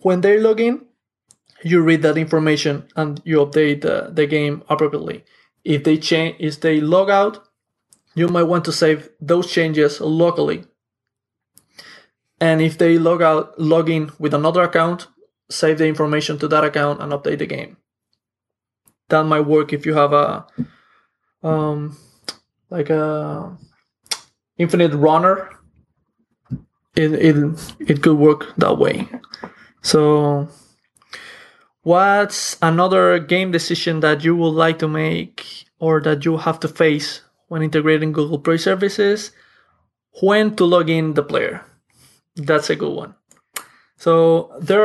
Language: English